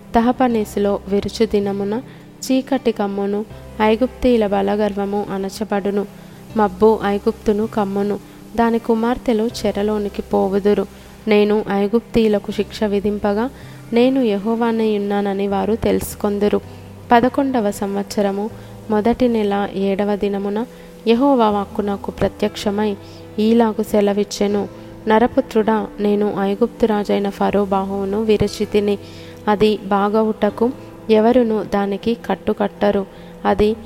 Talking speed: 85 wpm